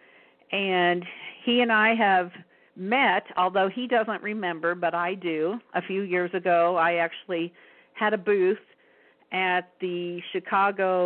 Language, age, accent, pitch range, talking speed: English, 50-69, American, 170-205 Hz, 135 wpm